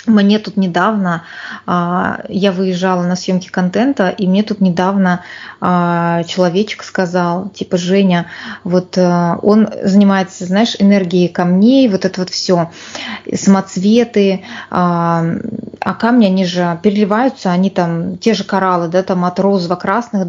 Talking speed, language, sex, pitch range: 125 wpm, Russian, female, 180-210 Hz